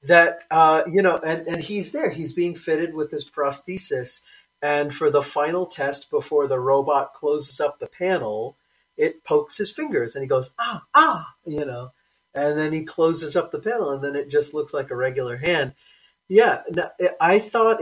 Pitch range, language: 140-190 Hz, English